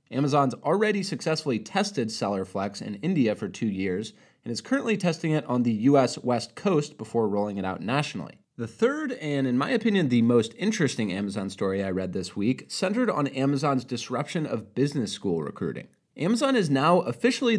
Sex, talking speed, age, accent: male, 175 wpm, 30-49, American